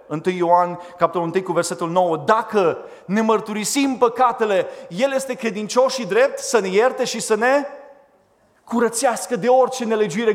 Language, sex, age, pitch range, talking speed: Romanian, male, 30-49, 150-245 Hz, 150 wpm